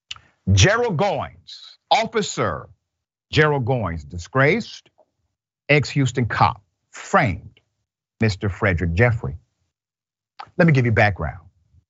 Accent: American